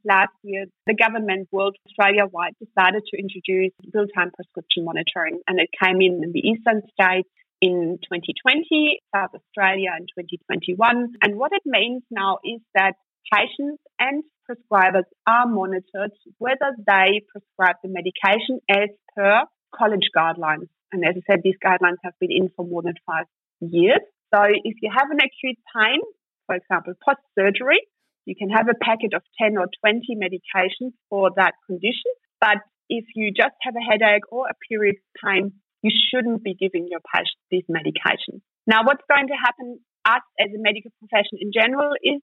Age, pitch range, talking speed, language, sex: 30-49, 185-230 Hz, 165 wpm, English, female